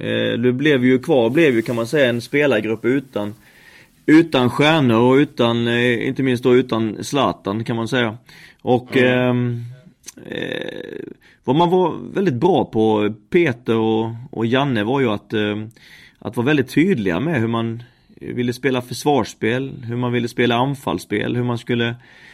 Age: 30-49